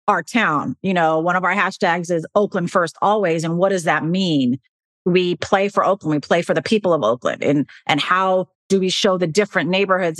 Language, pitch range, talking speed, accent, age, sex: English, 170-205 Hz, 220 wpm, American, 30-49, female